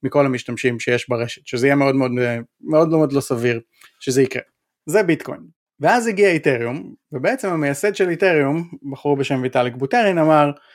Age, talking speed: 20-39, 155 wpm